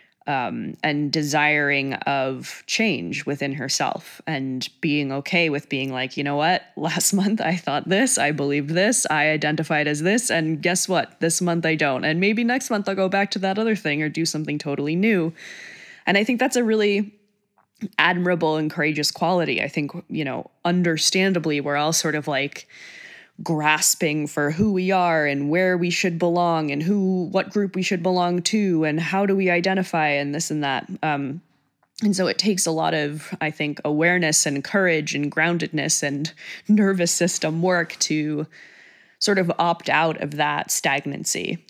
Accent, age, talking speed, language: American, 20-39, 180 wpm, English